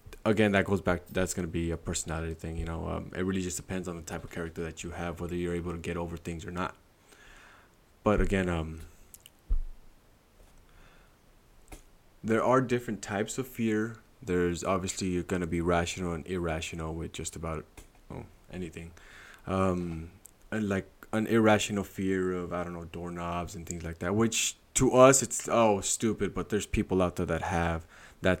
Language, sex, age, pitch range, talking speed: English, male, 20-39, 85-100 Hz, 180 wpm